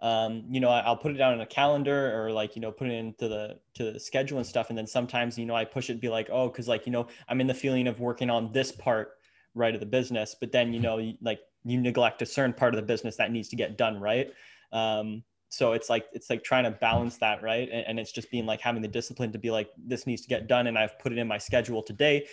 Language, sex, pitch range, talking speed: English, male, 110-125 Hz, 290 wpm